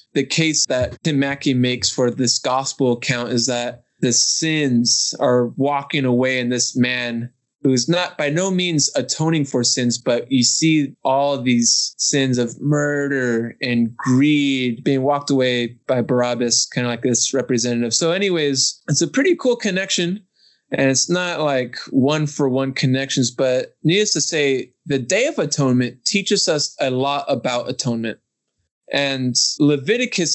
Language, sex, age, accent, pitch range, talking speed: English, male, 20-39, American, 125-145 Hz, 160 wpm